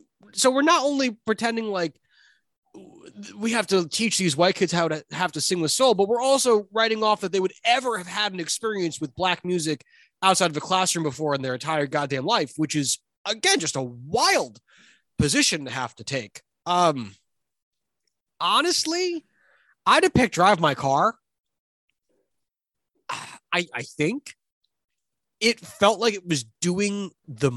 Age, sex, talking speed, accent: 30-49, male, 165 wpm, American